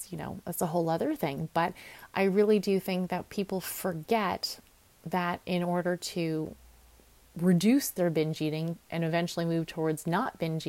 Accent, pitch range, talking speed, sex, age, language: American, 165-195 Hz, 165 wpm, female, 30-49, English